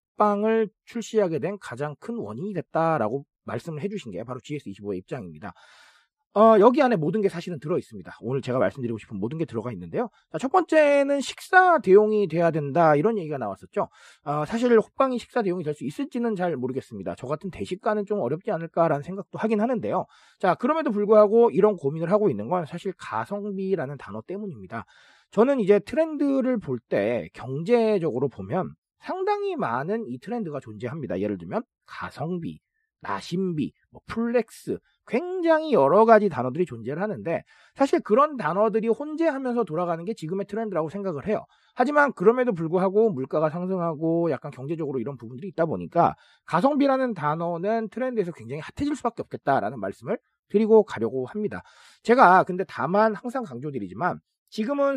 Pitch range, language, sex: 155-235 Hz, Korean, male